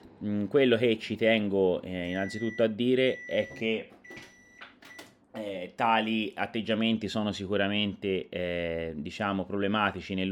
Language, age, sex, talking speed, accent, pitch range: Italian, 30-49, male, 110 wpm, native, 90-105 Hz